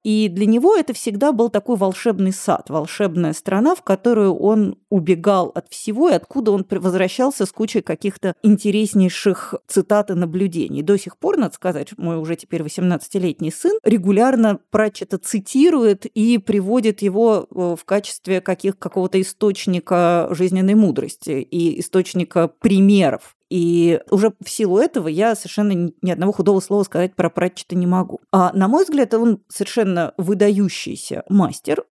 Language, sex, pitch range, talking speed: Russian, female, 185-225 Hz, 145 wpm